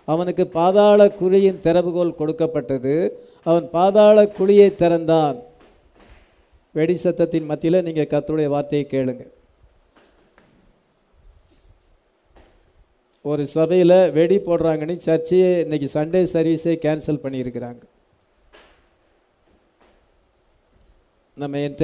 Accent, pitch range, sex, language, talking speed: Indian, 145-195 Hz, male, English, 70 wpm